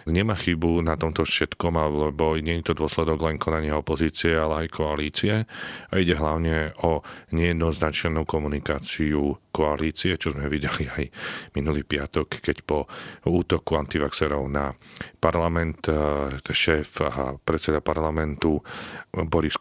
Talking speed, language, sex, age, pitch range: 120 wpm, Slovak, male, 40-59, 75-85 Hz